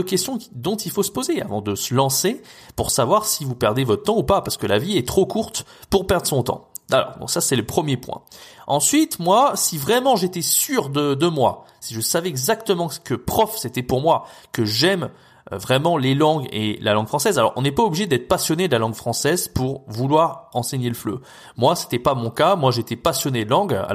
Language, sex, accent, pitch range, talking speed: French, male, French, 115-165 Hz, 235 wpm